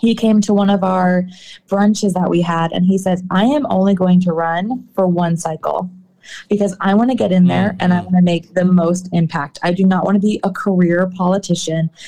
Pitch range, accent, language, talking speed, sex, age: 175-205 Hz, American, English, 230 wpm, female, 20-39